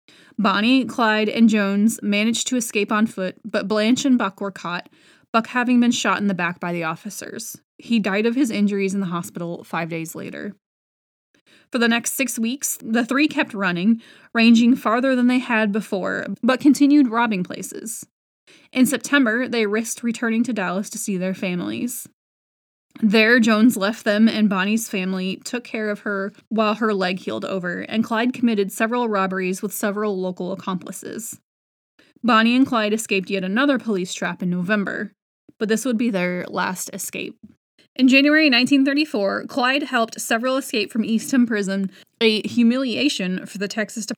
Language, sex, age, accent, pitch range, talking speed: English, female, 20-39, American, 200-245 Hz, 165 wpm